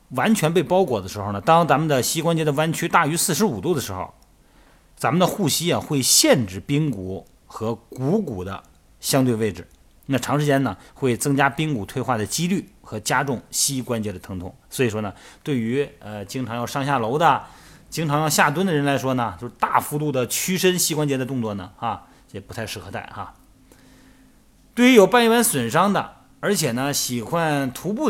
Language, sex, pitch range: Chinese, male, 110-150 Hz